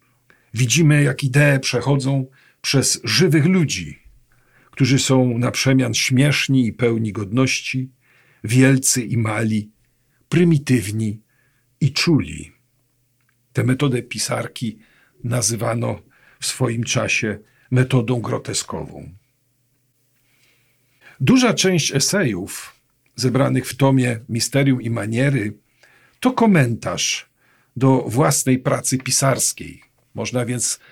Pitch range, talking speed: 120-145 Hz, 90 wpm